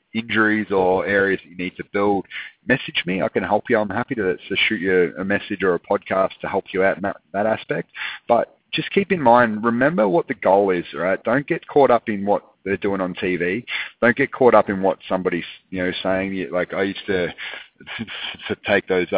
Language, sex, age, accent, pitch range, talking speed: English, male, 30-49, Australian, 90-110 Hz, 220 wpm